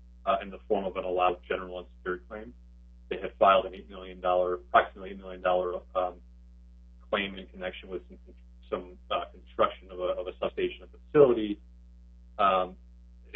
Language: English